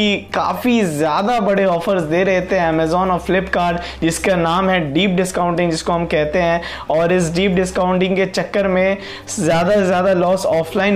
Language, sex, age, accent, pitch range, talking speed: Hindi, male, 20-39, native, 175-205 Hz, 130 wpm